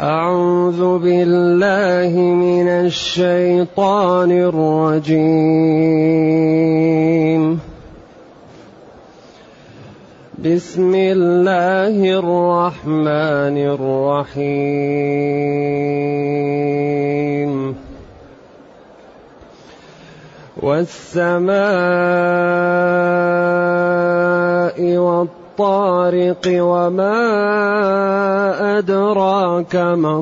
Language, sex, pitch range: Arabic, male, 155-180 Hz